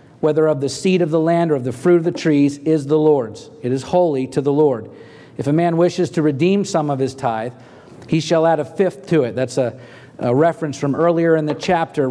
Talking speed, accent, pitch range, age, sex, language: 245 wpm, American, 135-165 Hz, 40-59, male, English